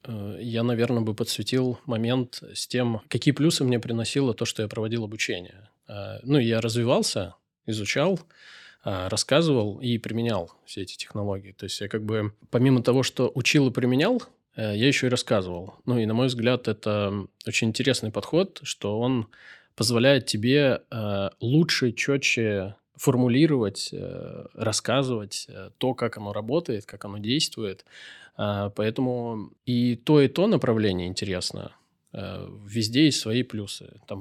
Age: 20-39